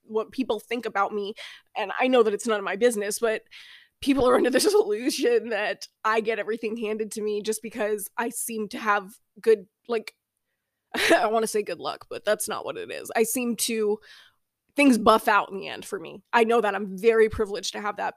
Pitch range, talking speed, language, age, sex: 220-255 Hz, 220 wpm, English, 20-39, female